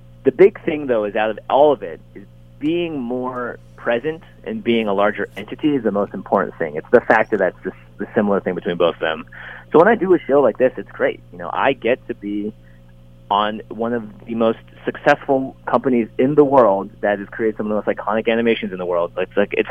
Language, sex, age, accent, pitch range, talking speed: English, male, 30-49, American, 90-125 Hz, 240 wpm